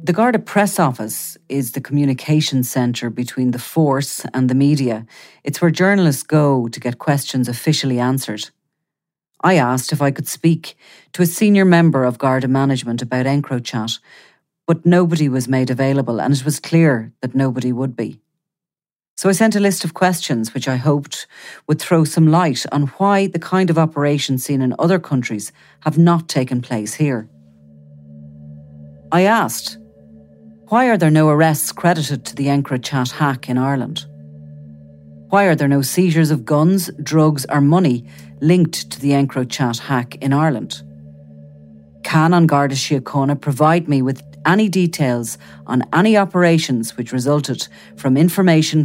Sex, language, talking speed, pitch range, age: female, English, 155 wpm, 125-160 Hz, 40-59